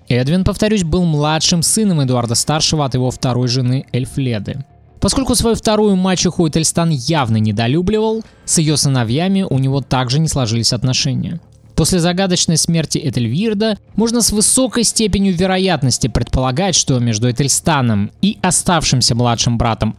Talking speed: 130 wpm